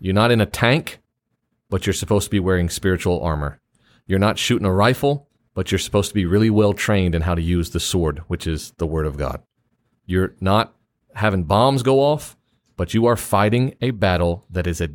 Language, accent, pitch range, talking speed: English, American, 100-120 Hz, 215 wpm